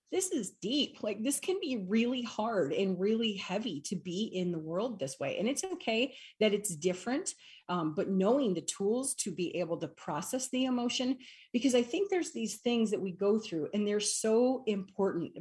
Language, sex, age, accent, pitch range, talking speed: English, female, 40-59, American, 175-225 Hz, 200 wpm